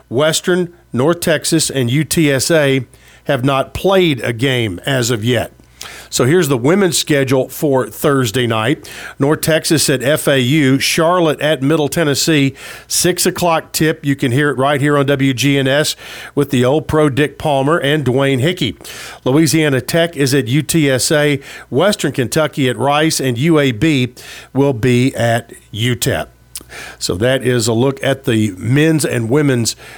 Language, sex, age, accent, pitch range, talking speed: English, male, 50-69, American, 130-160 Hz, 150 wpm